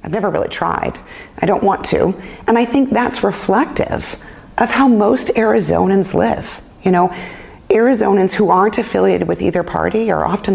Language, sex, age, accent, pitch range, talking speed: English, female, 40-59, American, 185-245 Hz, 165 wpm